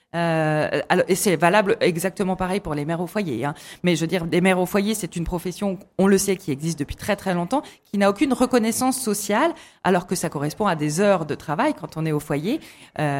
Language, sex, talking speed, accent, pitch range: French, female, 240 wpm, French, 160-210 Hz